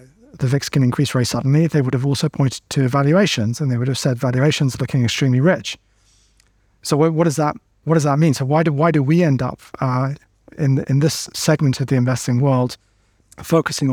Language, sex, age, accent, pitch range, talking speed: English, male, 30-49, British, 120-150 Hz, 210 wpm